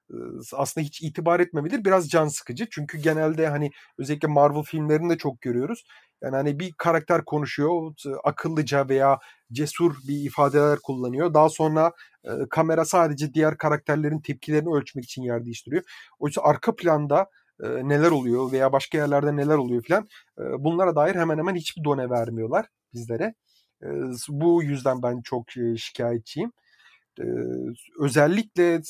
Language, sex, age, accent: Turkish, male, 40-59, native